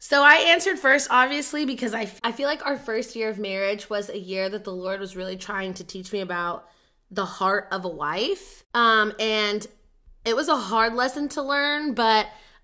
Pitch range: 200-265 Hz